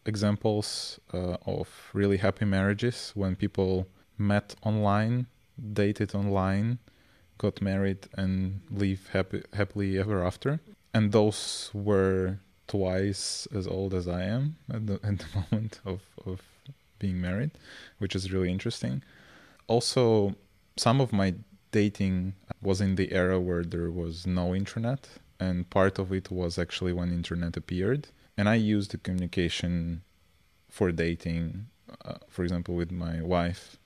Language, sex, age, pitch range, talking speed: English, male, 20-39, 90-105 Hz, 140 wpm